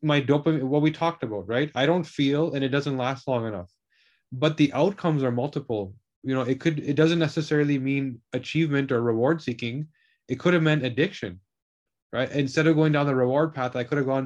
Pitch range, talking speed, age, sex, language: 120-145 Hz, 210 wpm, 30-49, male, English